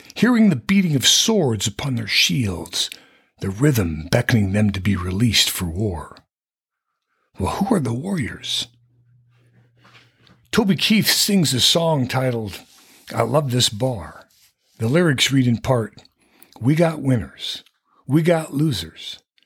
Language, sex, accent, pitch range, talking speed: English, male, American, 110-155 Hz, 135 wpm